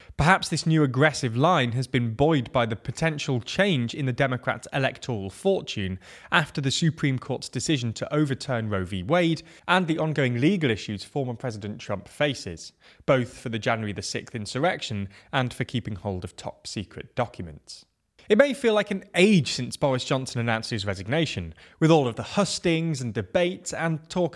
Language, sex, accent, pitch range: English, male, British, 110-165 Hz